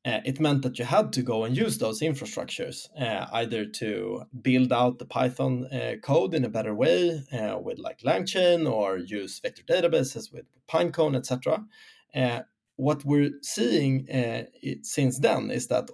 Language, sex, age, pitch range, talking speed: English, male, 20-39, 120-150 Hz, 175 wpm